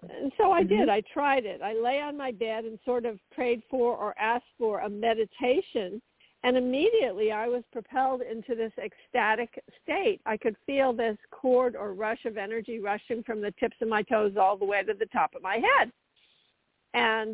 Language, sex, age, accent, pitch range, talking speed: English, female, 50-69, American, 215-265 Hz, 195 wpm